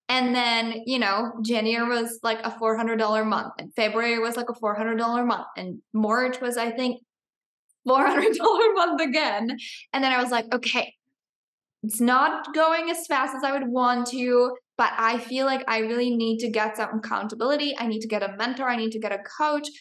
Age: 10-29